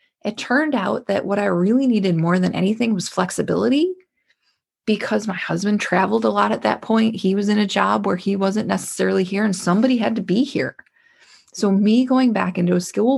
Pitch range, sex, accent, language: 180-220 Hz, female, American, English